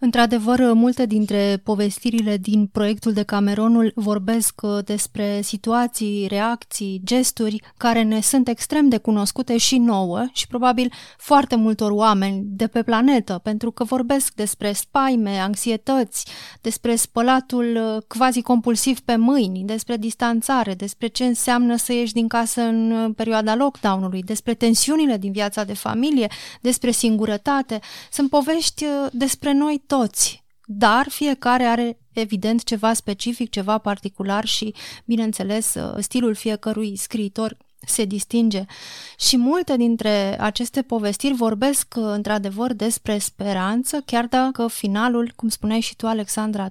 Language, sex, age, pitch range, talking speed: Romanian, female, 30-49, 210-245 Hz, 125 wpm